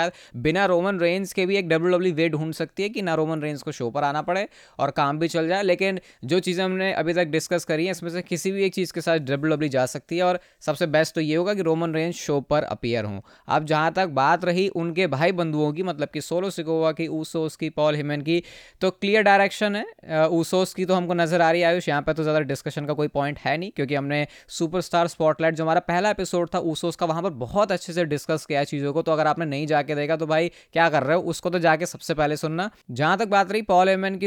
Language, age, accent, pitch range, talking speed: Hindi, 20-39, native, 145-180 Hz, 90 wpm